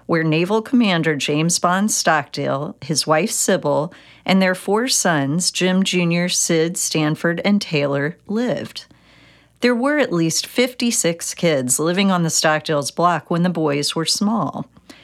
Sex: female